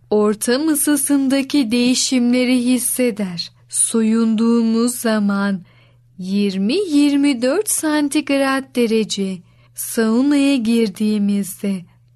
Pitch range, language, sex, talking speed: 205-260 Hz, Turkish, female, 55 wpm